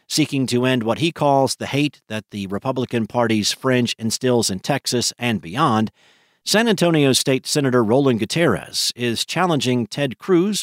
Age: 50-69